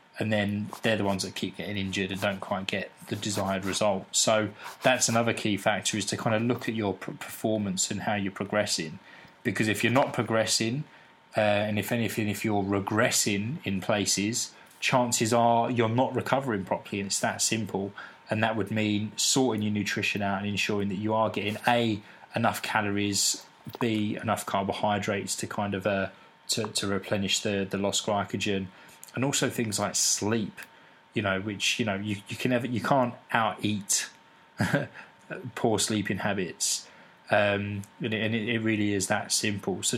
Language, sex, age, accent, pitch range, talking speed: English, male, 20-39, British, 100-115 Hz, 180 wpm